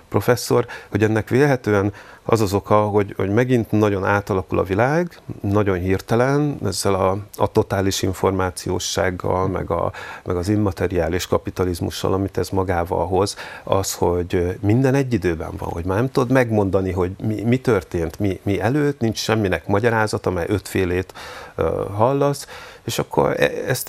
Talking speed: 145 wpm